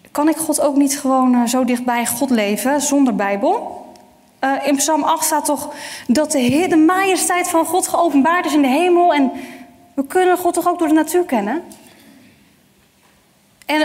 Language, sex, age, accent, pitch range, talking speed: Dutch, female, 10-29, Dutch, 235-290 Hz, 170 wpm